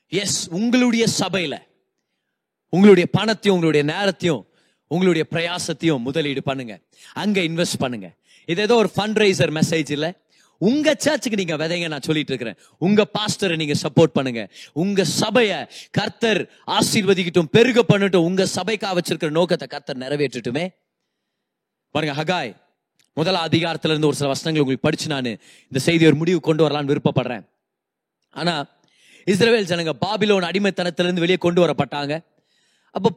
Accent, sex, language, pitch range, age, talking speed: native, male, Tamil, 155-205 Hz, 30-49, 100 wpm